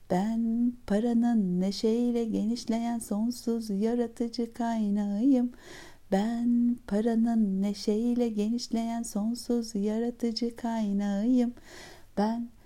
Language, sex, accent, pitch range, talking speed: Turkish, female, native, 210-235 Hz, 70 wpm